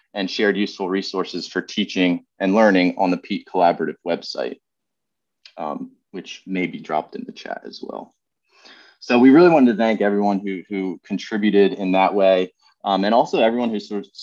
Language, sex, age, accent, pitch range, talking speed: English, male, 30-49, American, 95-105 Hz, 180 wpm